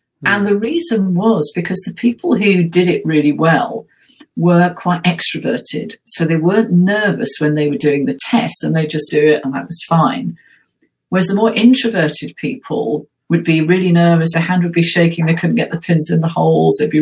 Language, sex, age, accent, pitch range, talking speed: English, female, 50-69, British, 155-205 Hz, 205 wpm